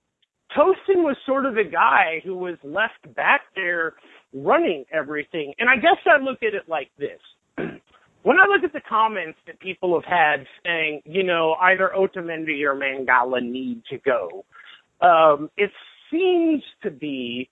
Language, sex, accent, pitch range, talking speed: English, male, American, 165-245 Hz, 160 wpm